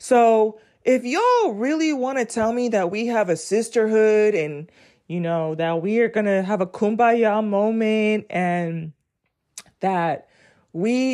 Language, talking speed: English, 150 wpm